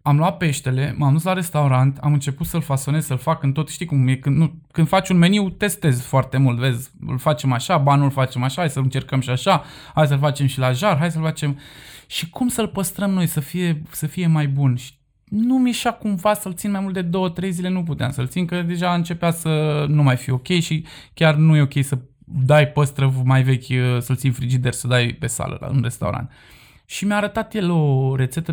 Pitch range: 135-175 Hz